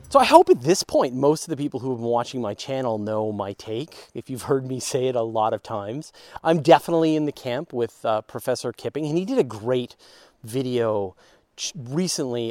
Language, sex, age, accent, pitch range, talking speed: English, male, 30-49, American, 120-160 Hz, 215 wpm